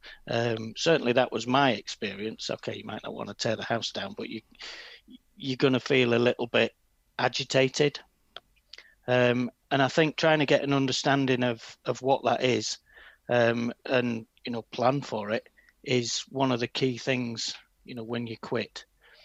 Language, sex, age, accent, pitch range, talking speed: English, male, 40-59, British, 115-130 Hz, 180 wpm